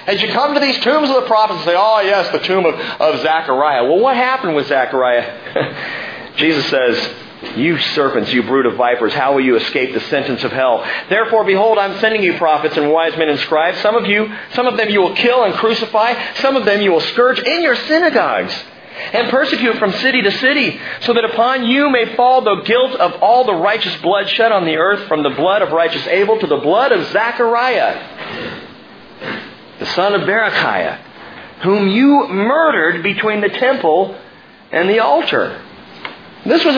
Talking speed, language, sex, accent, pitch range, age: 195 wpm, English, male, American, 160-245 Hz, 40-59